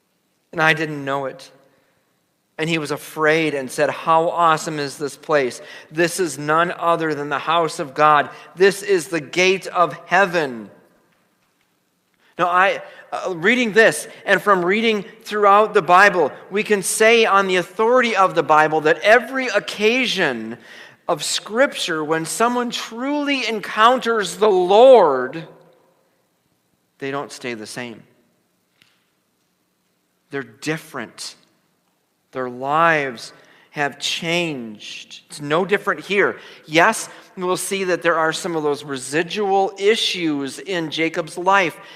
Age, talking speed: 40-59, 130 wpm